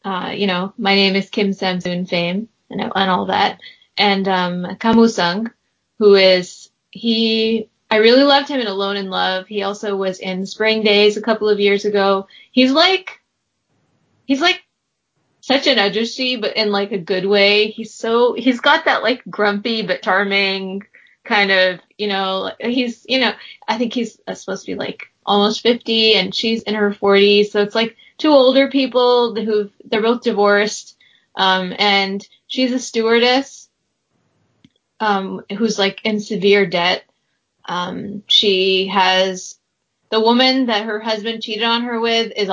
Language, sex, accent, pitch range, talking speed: English, female, American, 190-225 Hz, 160 wpm